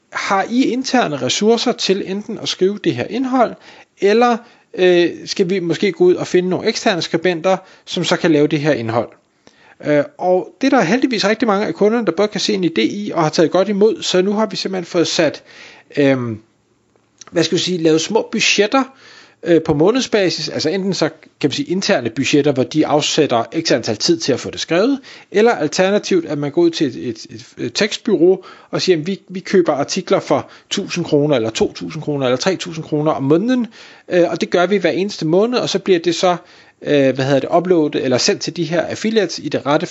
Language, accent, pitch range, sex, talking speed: Danish, native, 150-205 Hz, male, 210 wpm